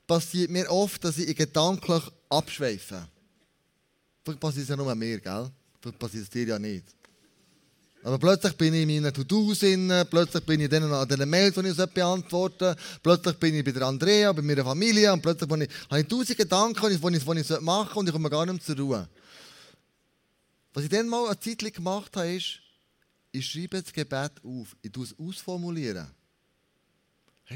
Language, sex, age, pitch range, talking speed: German, male, 20-39, 135-180 Hz, 185 wpm